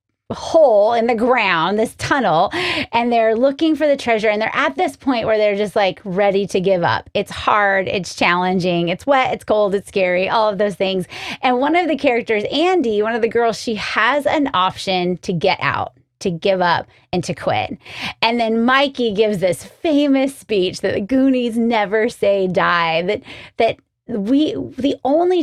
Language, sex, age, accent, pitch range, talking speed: English, female, 30-49, American, 195-265 Hz, 190 wpm